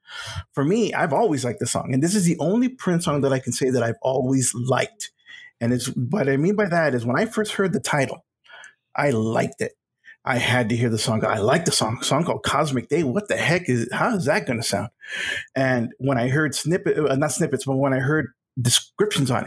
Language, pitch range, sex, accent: English, 130-165 Hz, male, American